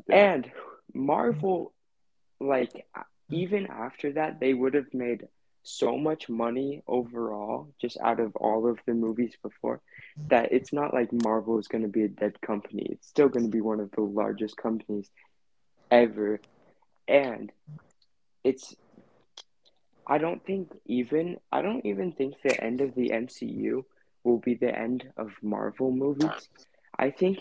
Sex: male